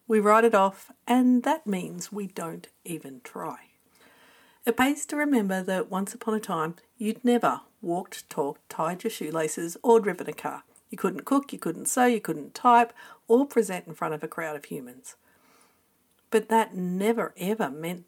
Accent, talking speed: Australian, 180 wpm